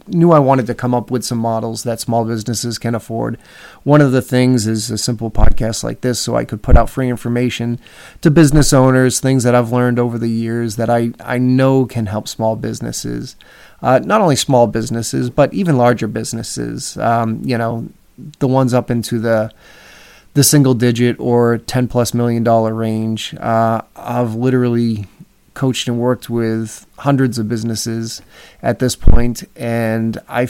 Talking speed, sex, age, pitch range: 175 wpm, male, 30-49, 110-125 Hz